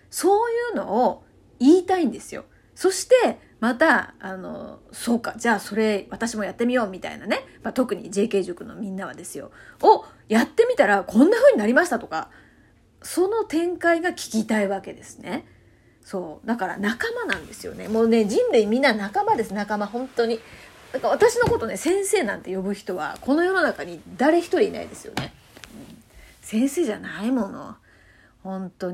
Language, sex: Japanese, female